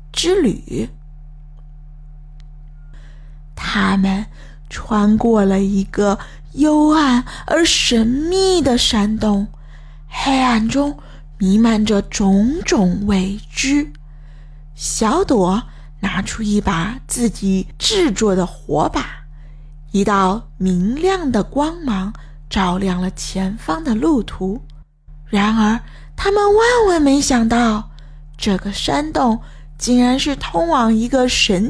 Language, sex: Chinese, female